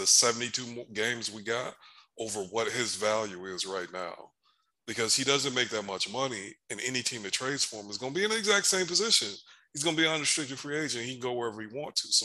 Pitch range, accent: 105-130 Hz, American